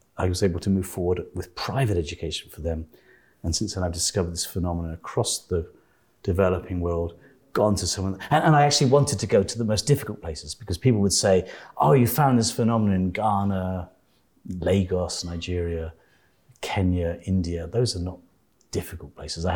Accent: British